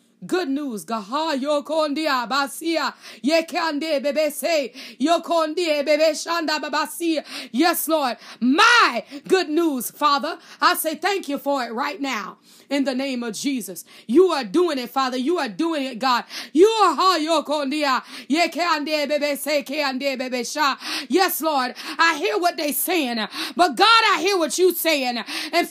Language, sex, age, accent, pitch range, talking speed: English, female, 30-49, American, 225-310 Hz, 125 wpm